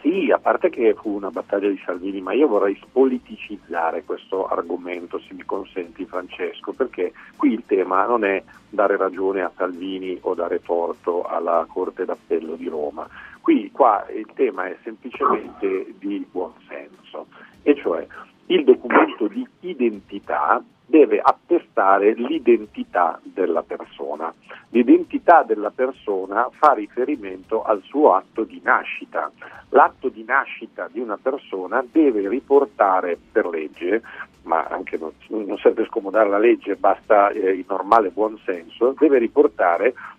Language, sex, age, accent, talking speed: Italian, male, 50-69, native, 130 wpm